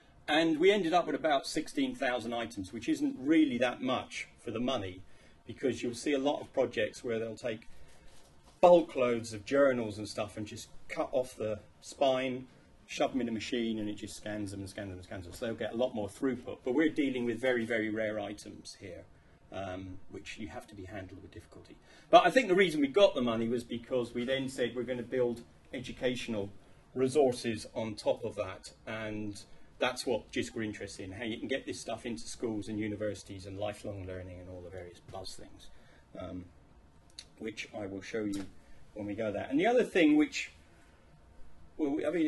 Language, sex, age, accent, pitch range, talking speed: English, male, 40-59, British, 100-125 Hz, 210 wpm